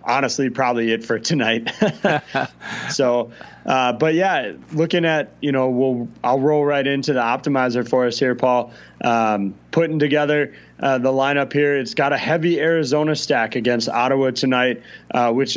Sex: male